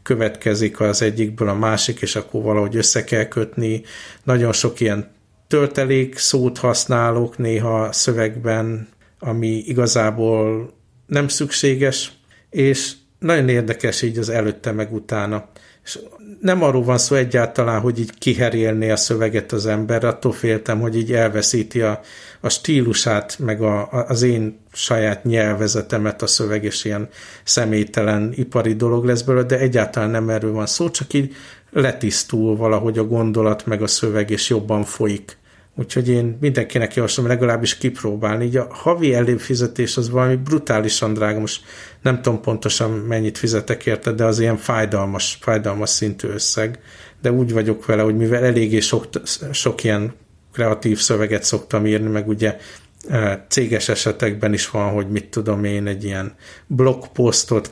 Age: 60-79